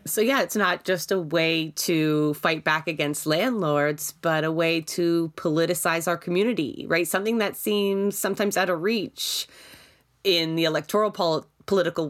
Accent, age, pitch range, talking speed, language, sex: American, 30-49, 160-200 Hz, 155 wpm, English, female